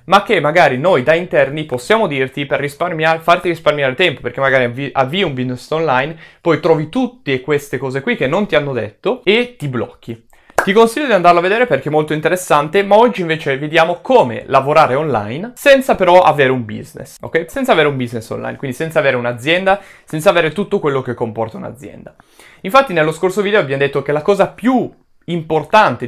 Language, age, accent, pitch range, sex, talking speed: Italian, 20-39, native, 135-180 Hz, male, 190 wpm